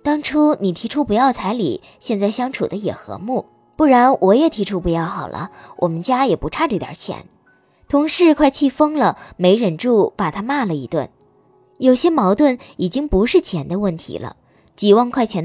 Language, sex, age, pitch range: Chinese, male, 20-39, 175-260 Hz